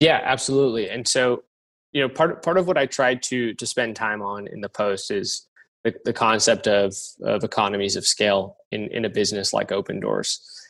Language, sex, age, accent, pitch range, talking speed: English, male, 20-39, American, 100-125 Hz, 200 wpm